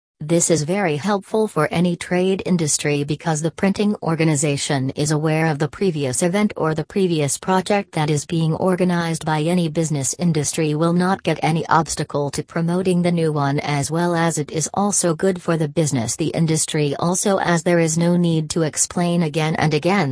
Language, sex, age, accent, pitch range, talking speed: English, female, 40-59, American, 150-180 Hz, 190 wpm